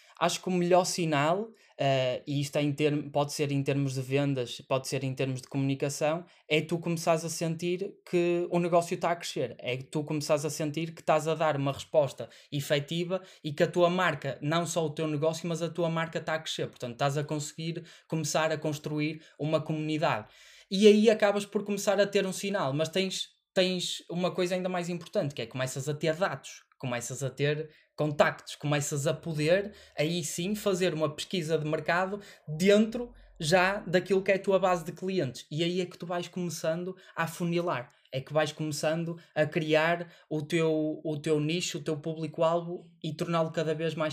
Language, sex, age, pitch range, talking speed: Portuguese, male, 20-39, 145-175 Hz, 205 wpm